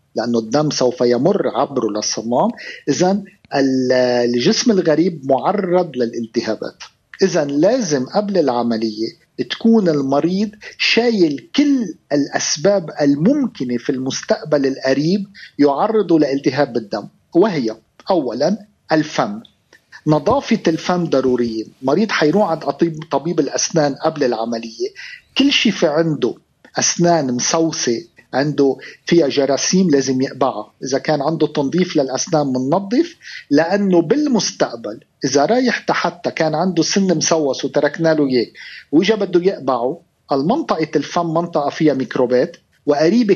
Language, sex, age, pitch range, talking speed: Arabic, male, 50-69, 135-195 Hz, 110 wpm